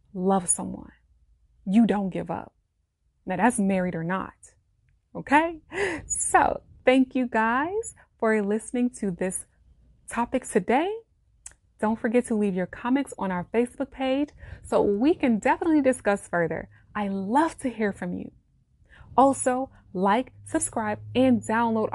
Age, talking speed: 20-39, 135 wpm